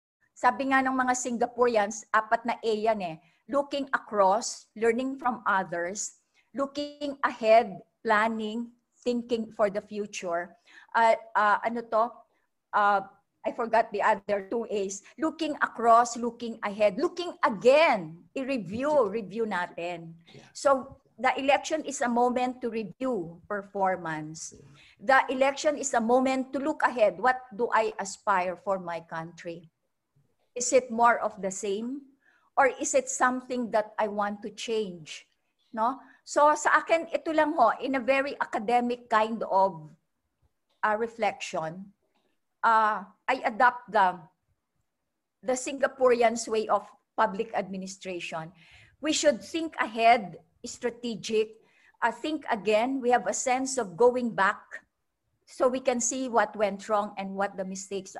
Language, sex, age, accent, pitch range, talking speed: Filipino, female, 50-69, native, 200-260 Hz, 135 wpm